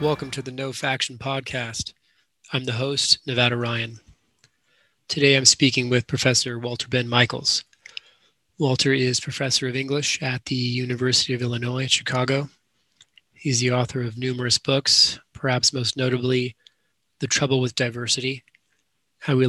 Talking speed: 140 wpm